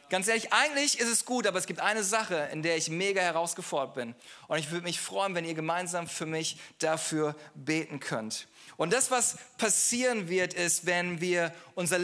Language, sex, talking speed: German, male, 195 wpm